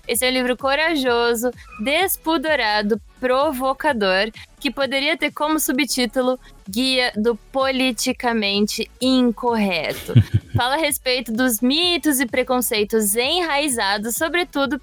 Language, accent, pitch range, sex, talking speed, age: Portuguese, Brazilian, 220-265 Hz, female, 100 wpm, 20-39